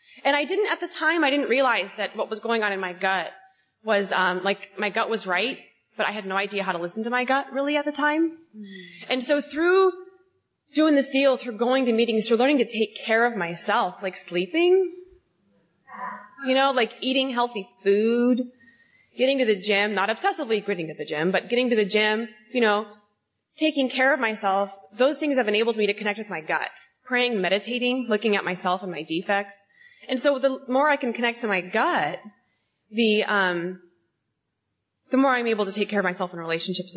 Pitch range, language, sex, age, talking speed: 195-260 Hz, English, female, 20-39, 205 wpm